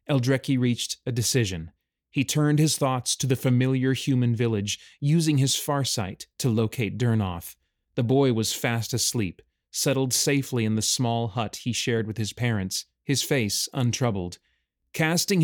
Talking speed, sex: 150 wpm, male